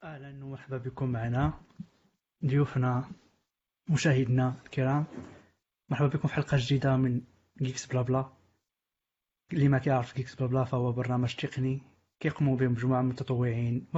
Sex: male